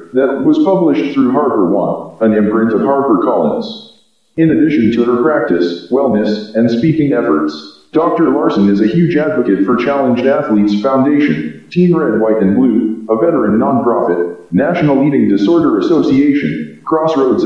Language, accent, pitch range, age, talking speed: English, American, 105-155 Hz, 40-59, 145 wpm